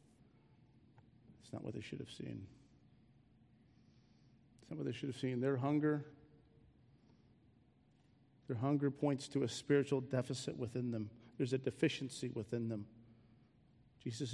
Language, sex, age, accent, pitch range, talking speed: English, male, 40-59, American, 125-150 Hz, 130 wpm